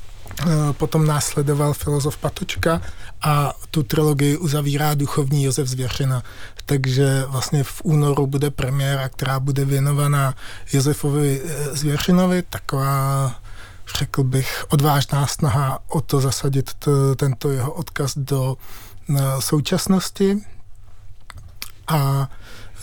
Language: Czech